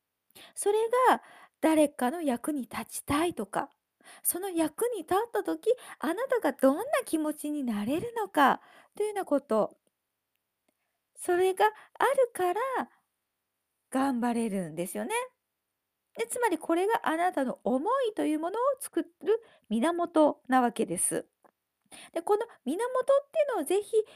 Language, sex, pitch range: Japanese, female, 270-435 Hz